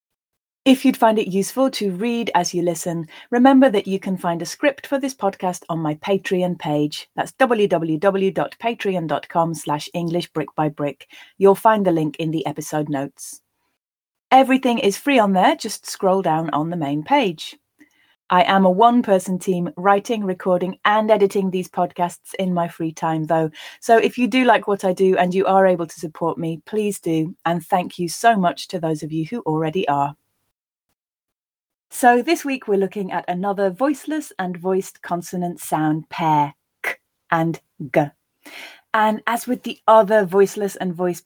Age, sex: 30-49, female